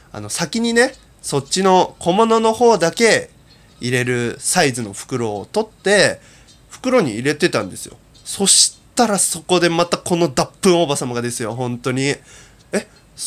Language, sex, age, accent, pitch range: Japanese, male, 20-39, native, 125-195 Hz